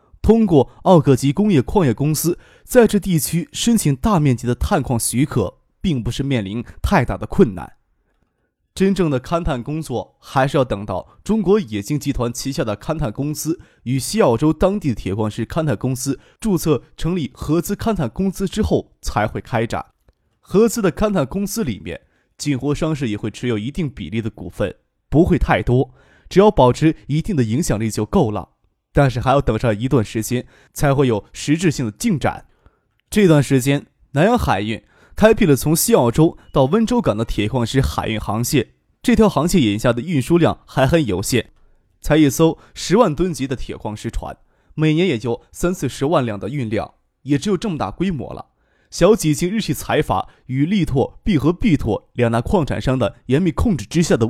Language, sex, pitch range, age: Chinese, male, 120-170 Hz, 20-39